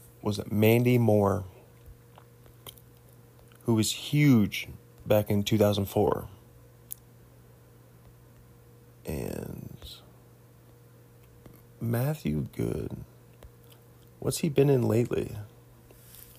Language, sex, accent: English, male, American